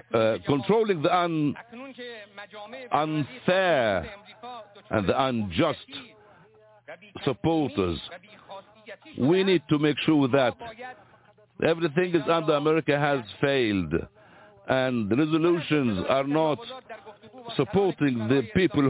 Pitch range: 135-185 Hz